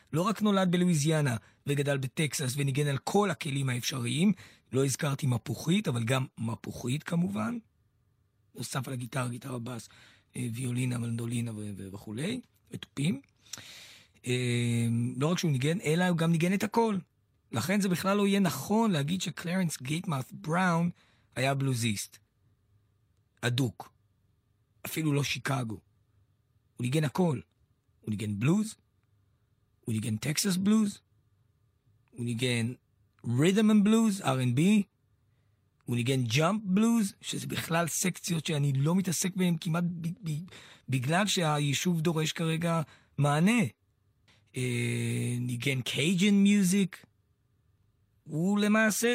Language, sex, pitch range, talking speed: Hebrew, male, 115-175 Hz, 115 wpm